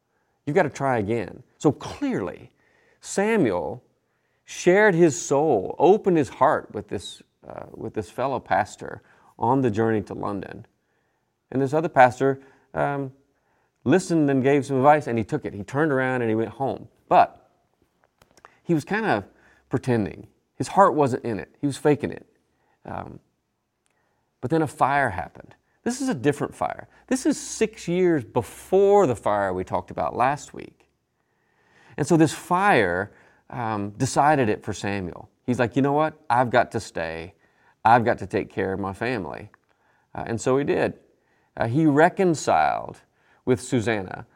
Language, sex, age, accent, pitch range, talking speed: English, male, 40-59, American, 115-150 Hz, 160 wpm